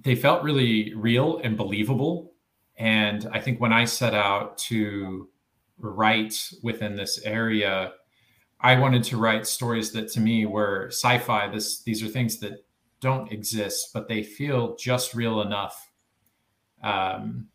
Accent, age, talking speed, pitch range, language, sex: American, 40-59, 145 wpm, 105-120 Hz, English, male